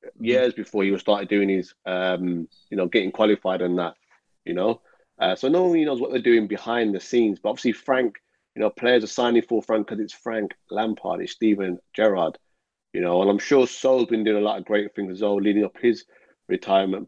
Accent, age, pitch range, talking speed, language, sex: British, 30-49, 95-115 Hz, 220 wpm, English, male